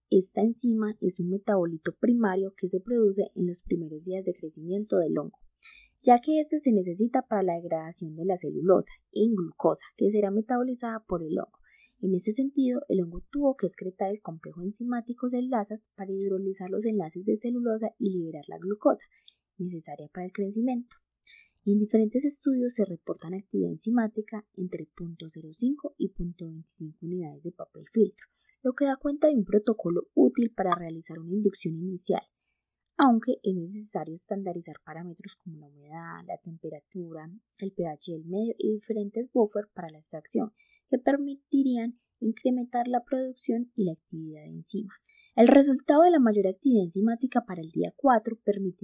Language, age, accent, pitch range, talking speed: Spanish, 20-39, Colombian, 175-240 Hz, 165 wpm